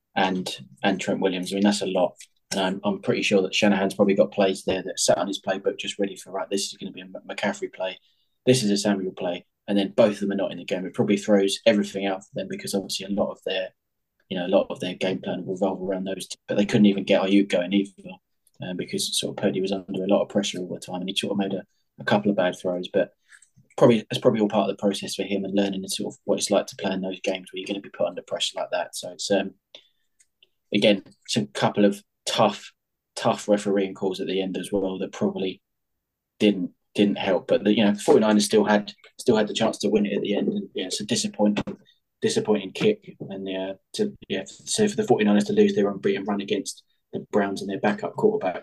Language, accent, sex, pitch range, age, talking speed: English, British, male, 95-105 Hz, 20-39, 260 wpm